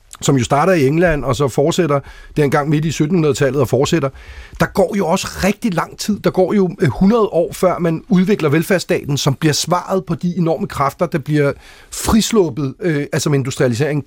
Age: 40-59